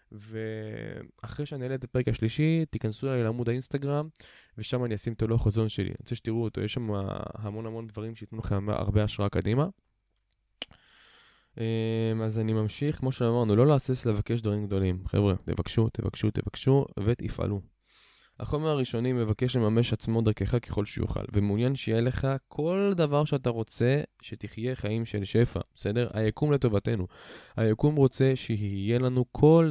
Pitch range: 105-125 Hz